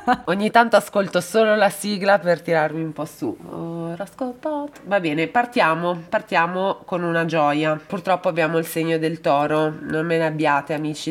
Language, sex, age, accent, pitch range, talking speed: Italian, female, 20-39, native, 145-200 Hz, 155 wpm